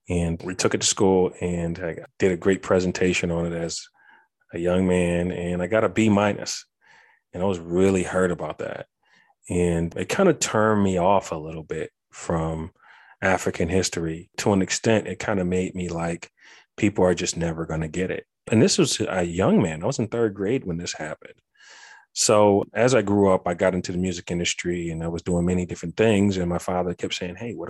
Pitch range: 85-105 Hz